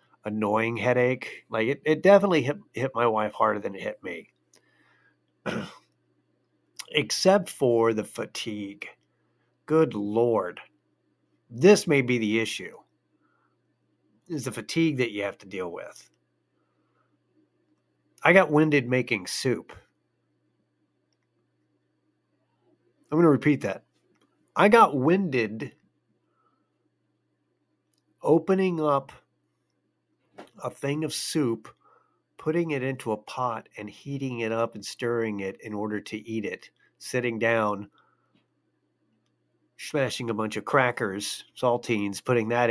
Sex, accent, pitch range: male, American, 95-125 Hz